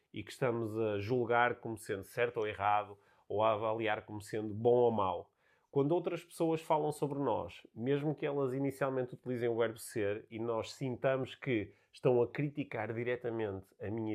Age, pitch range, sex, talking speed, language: 30-49, 110-135 Hz, male, 180 wpm, Portuguese